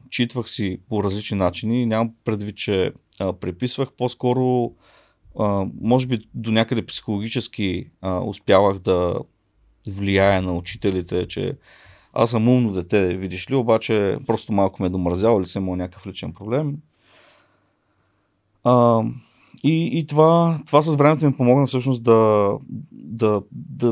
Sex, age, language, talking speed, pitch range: male, 30-49, Bulgarian, 135 wpm, 100-125 Hz